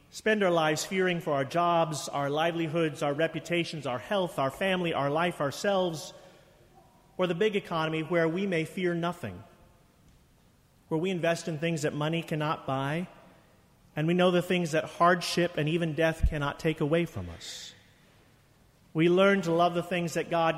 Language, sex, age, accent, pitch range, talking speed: English, male, 40-59, American, 145-170 Hz, 170 wpm